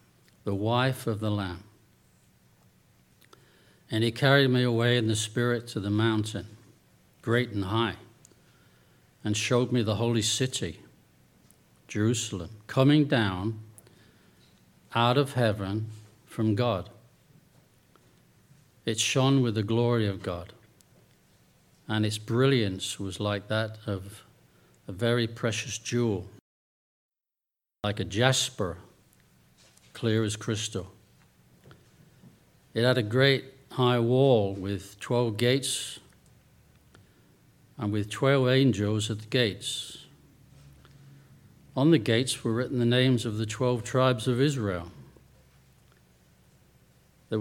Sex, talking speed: male, 110 wpm